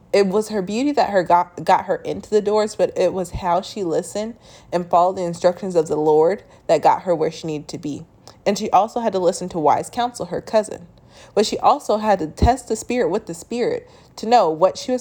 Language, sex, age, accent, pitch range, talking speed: English, female, 20-39, American, 175-225 Hz, 240 wpm